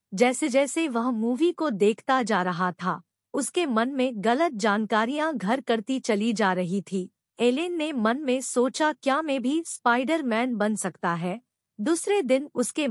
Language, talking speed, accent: English, 165 wpm, Indian